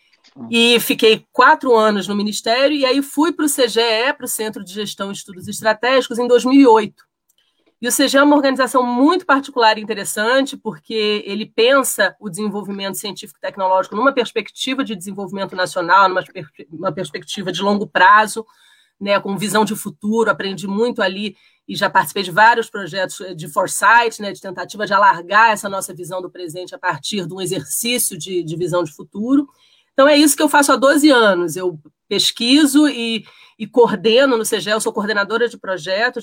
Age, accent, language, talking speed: 30-49, Brazilian, Portuguese, 180 wpm